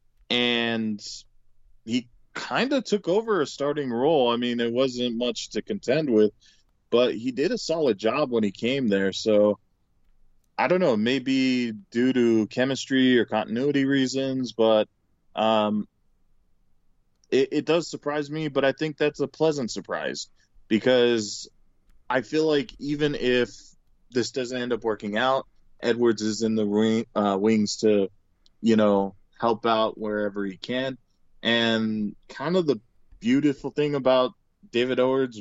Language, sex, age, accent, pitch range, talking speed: English, male, 20-39, American, 105-130 Hz, 150 wpm